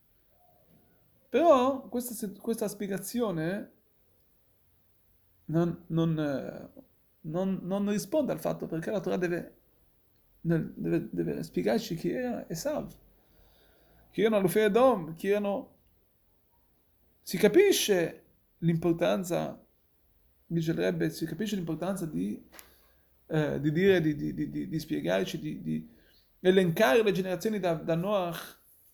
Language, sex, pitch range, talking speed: Italian, male, 155-220 Hz, 110 wpm